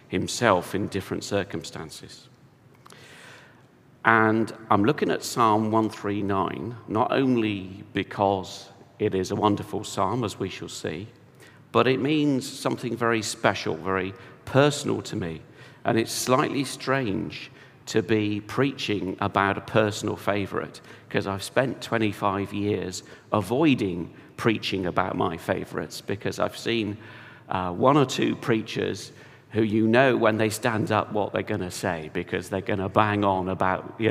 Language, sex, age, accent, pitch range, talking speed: English, male, 50-69, British, 95-115 Hz, 145 wpm